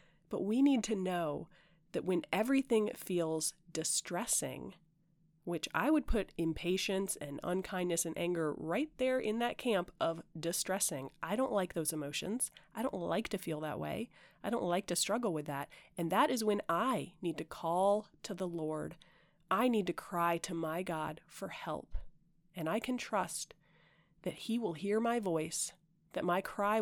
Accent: American